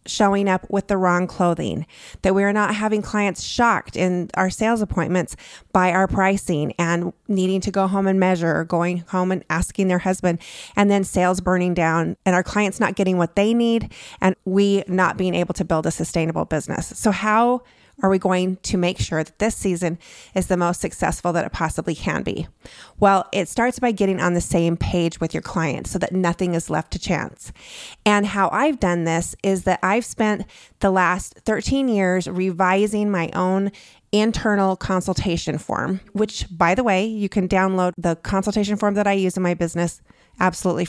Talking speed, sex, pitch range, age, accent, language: 195 wpm, female, 180-210 Hz, 30-49, American, English